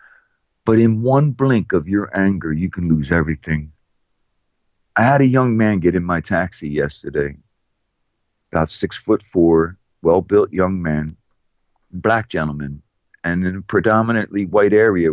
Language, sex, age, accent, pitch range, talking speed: English, male, 50-69, American, 85-115 Hz, 145 wpm